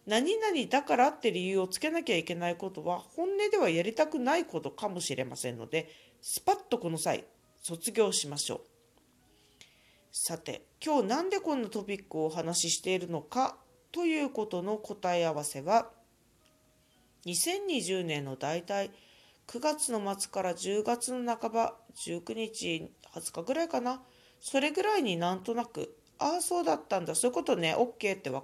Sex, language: female, Japanese